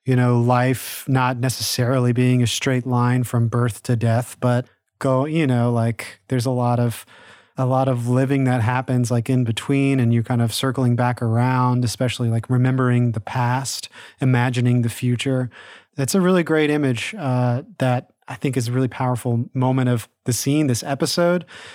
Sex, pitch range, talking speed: male, 120-145 Hz, 180 wpm